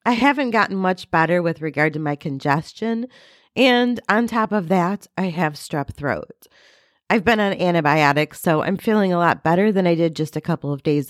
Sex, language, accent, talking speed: female, English, American, 200 wpm